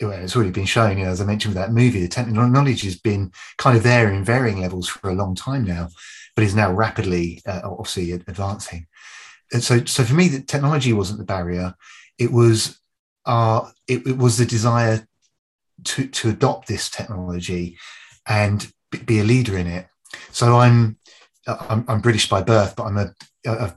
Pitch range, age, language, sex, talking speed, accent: 95-115 Hz, 30-49, English, male, 180 wpm, British